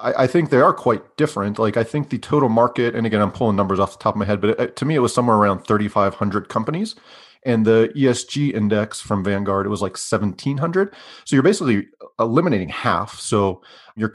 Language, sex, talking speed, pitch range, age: English, male, 210 wpm, 100-120 Hz, 40-59